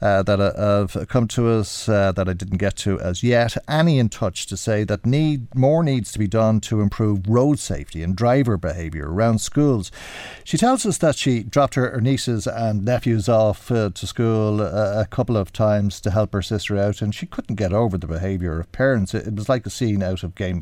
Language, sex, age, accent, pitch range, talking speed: English, male, 50-69, Irish, 100-120 Hz, 230 wpm